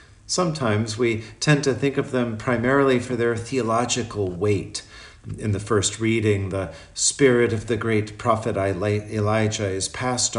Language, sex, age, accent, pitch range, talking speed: English, male, 50-69, American, 105-130 Hz, 145 wpm